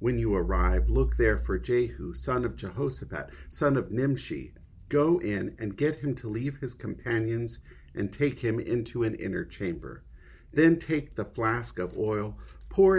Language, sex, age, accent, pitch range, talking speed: English, male, 50-69, American, 90-125 Hz, 165 wpm